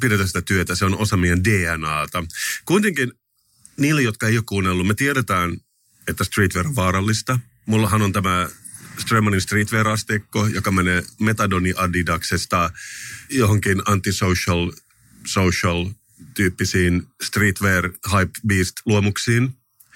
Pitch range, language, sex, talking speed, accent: 90-110 Hz, Finnish, male, 95 wpm, native